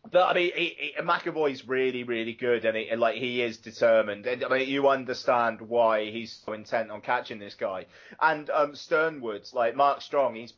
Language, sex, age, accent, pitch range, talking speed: English, male, 30-49, British, 110-130 Hz, 200 wpm